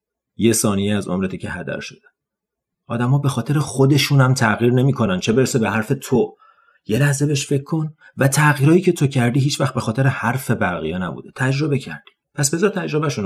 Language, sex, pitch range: Persian, male, 115-170 Hz